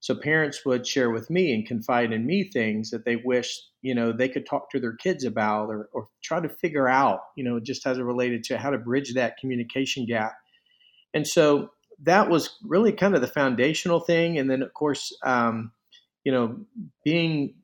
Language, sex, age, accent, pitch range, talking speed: English, male, 40-59, American, 120-155 Hz, 205 wpm